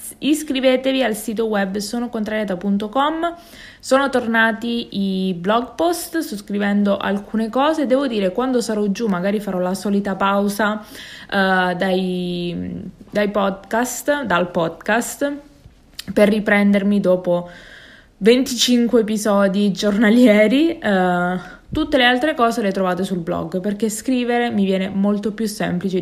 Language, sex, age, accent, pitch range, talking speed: Italian, female, 20-39, native, 185-240 Hz, 120 wpm